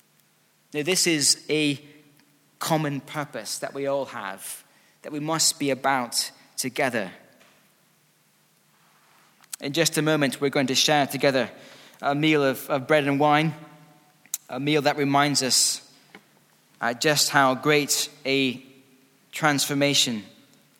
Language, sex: English, male